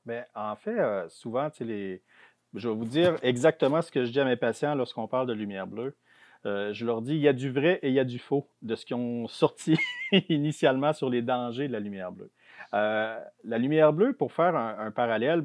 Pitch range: 115-150 Hz